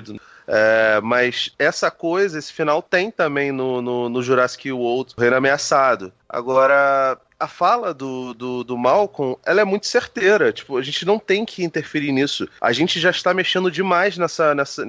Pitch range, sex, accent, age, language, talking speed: 130-180 Hz, male, Brazilian, 30-49, Portuguese, 175 wpm